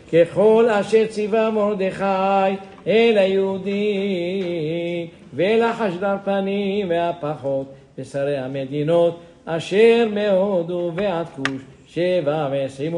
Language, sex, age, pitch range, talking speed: English, male, 50-69, 145-190 Hz, 80 wpm